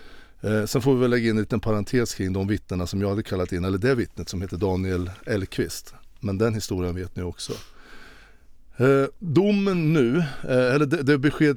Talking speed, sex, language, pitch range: 180 wpm, male, Swedish, 100-135 Hz